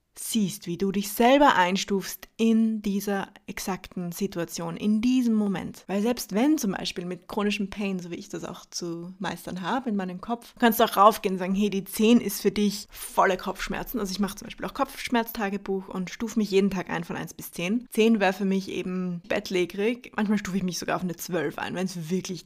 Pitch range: 185-220 Hz